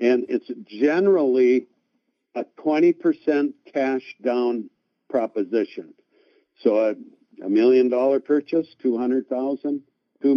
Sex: male